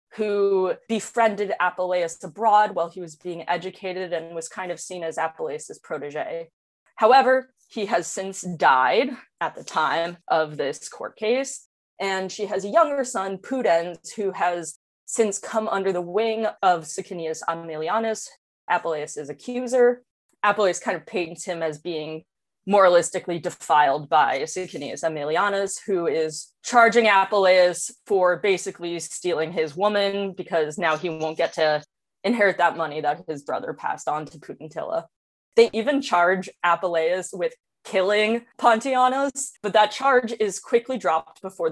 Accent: American